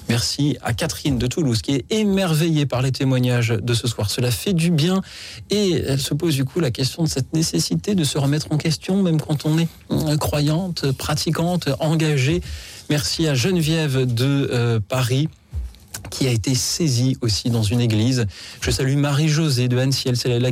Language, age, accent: French, 40-59, French